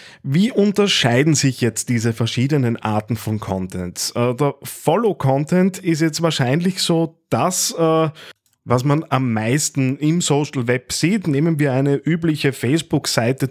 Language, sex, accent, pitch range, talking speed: German, male, Austrian, 125-160 Hz, 135 wpm